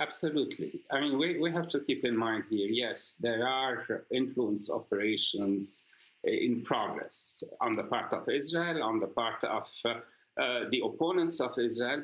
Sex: male